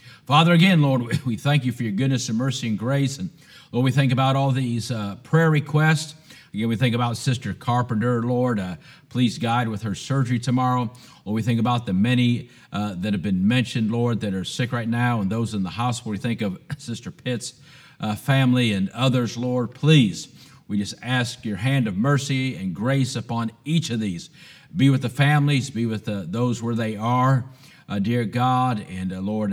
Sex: male